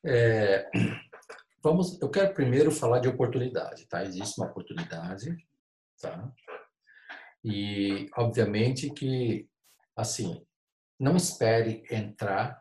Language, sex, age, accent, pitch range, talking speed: Portuguese, male, 50-69, Brazilian, 105-140 Hz, 95 wpm